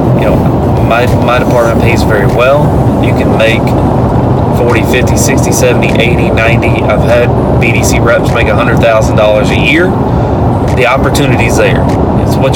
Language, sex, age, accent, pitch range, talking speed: English, male, 30-49, American, 110-125 Hz, 140 wpm